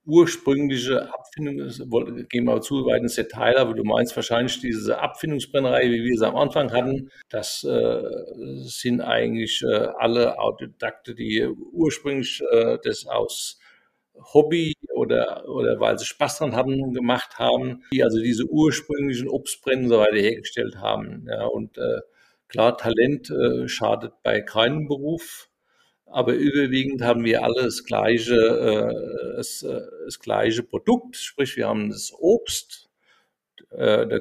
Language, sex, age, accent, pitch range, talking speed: German, male, 50-69, German, 120-165 Hz, 140 wpm